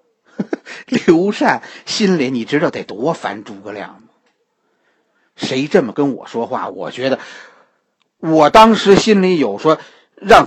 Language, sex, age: Chinese, male, 50-69